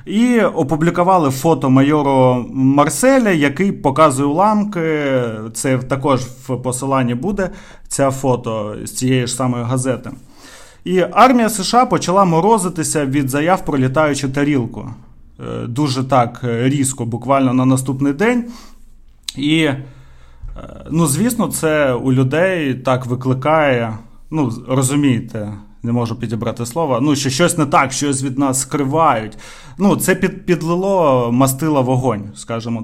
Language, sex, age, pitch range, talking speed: Ukrainian, male, 30-49, 125-170 Hz, 120 wpm